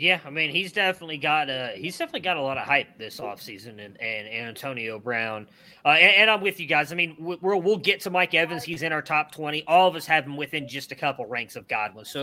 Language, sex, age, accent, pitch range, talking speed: English, male, 20-39, American, 140-190 Hz, 265 wpm